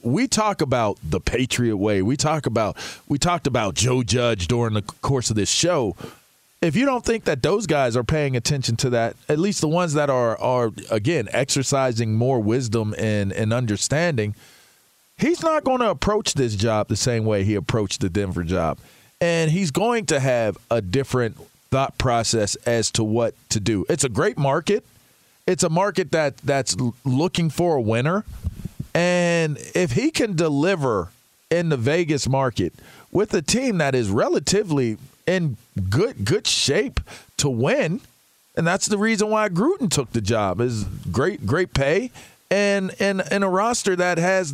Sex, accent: male, American